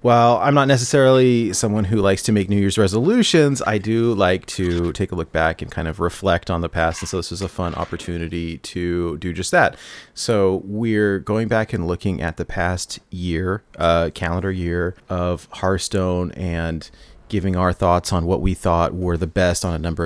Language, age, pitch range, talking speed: English, 30-49, 85-110 Hz, 200 wpm